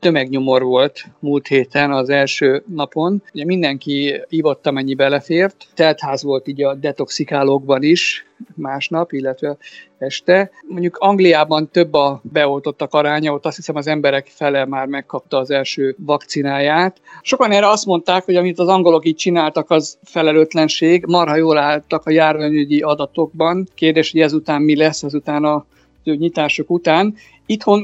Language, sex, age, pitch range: Hungarian, male, 50-69, 140-170 Hz